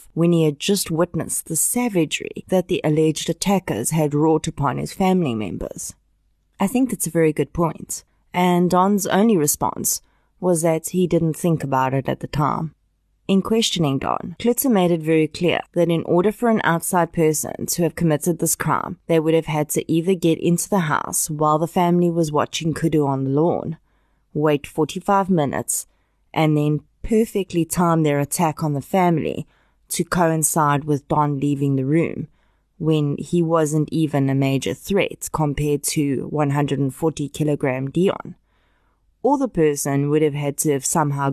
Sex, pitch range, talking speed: female, 145-175 Hz, 170 wpm